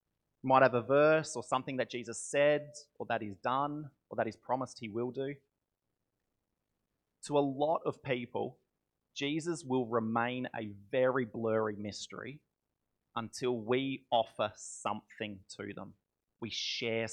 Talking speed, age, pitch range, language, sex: 140 wpm, 30-49, 110-130 Hz, English, male